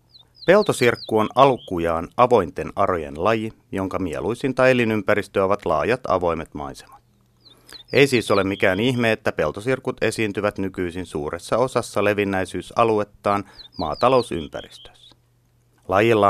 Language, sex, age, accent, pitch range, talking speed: Finnish, male, 30-49, native, 95-120 Hz, 100 wpm